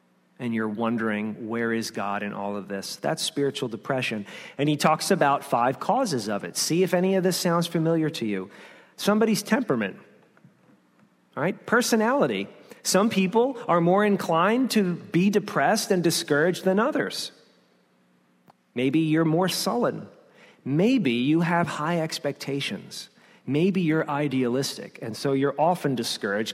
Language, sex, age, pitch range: English, male, 40-59, 130-180 Hz